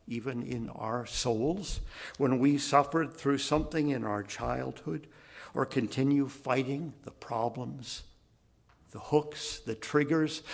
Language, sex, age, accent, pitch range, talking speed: English, male, 60-79, American, 110-140 Hz, 120 wpm